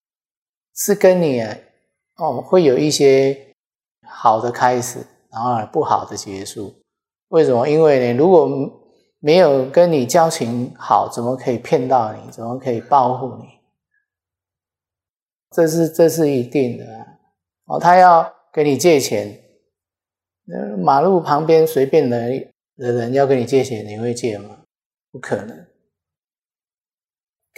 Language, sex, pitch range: Chinese, male, 120-150 Hz